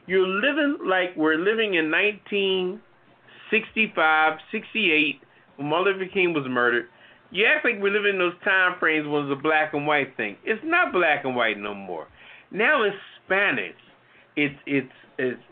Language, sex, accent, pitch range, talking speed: English, male, American, 180-245 Hz, 170 wpm